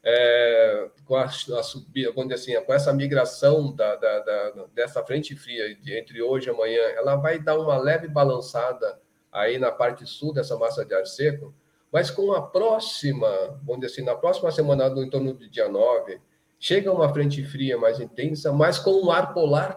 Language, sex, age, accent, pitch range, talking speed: Portuguese, male, 40-59, Brazilian, 135-170 Hz, 180 wpm